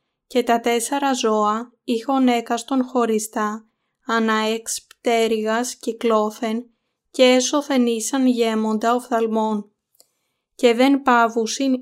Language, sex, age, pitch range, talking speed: Greek, female, 20-39, 220-250 Hz, 90 wpm